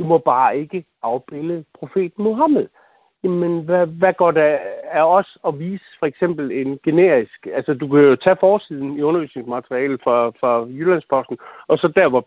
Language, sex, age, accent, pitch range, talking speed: Danish, male, 60-79, native, 135-185 Hz, 175 wpm